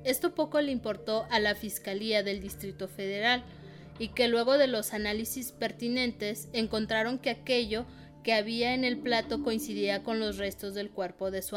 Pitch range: 200-235 Hz